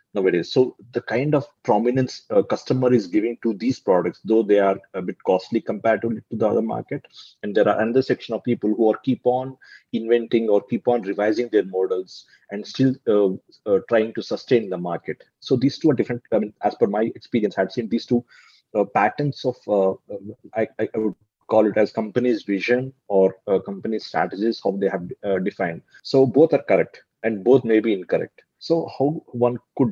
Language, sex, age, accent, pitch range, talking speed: Telugu, male, 30-49, native, 105-130 Hz, 200 wpm